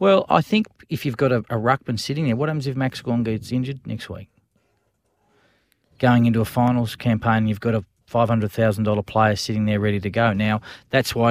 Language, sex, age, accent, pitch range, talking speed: English, male, 40-59, Australian, 105-125 Hz, 200 wpm